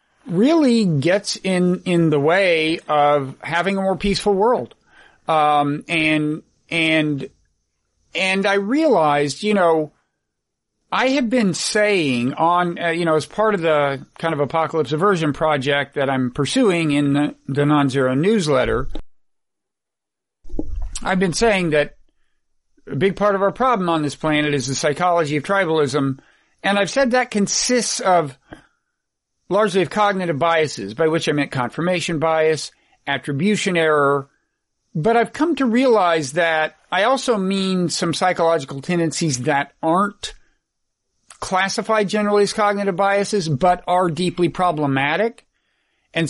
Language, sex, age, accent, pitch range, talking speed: English, male, 50-69, American, 150-200 Hz, 135 wpm